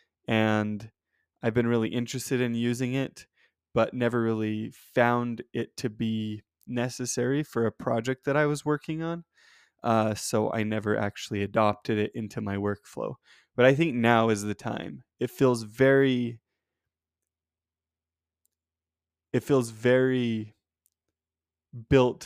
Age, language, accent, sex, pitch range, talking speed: 20-39, English, American, male, 105-135 Hz, 130 wpm